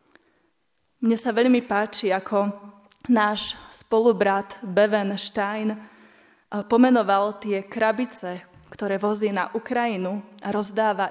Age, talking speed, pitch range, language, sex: 20-39, 95 wpm, 200-230 Hz, Slovak, female